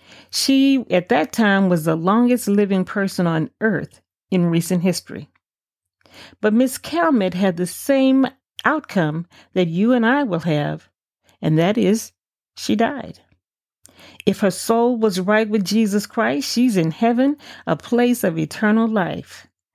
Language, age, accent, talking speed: English, 40-59, American, 145 wpm